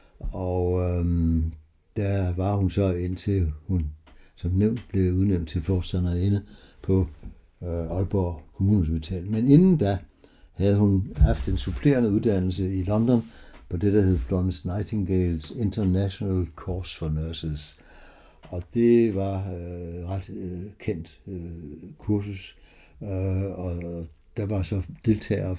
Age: 60-79